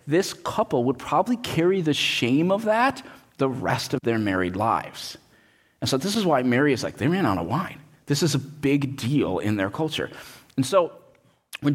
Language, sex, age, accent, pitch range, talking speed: English, male, 30-49, American, 130-180 Hz, 200 wpm